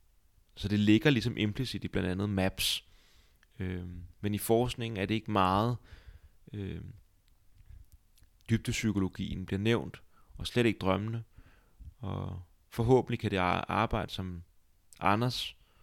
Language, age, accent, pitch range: Danish, 30-49, native, 95-115 Hz